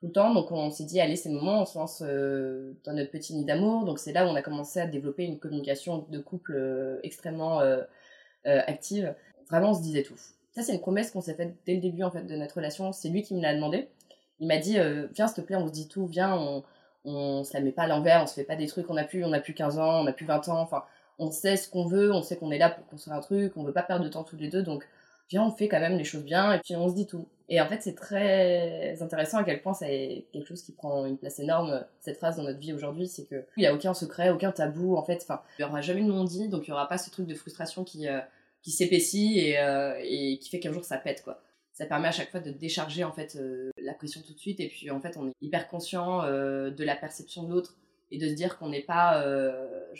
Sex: female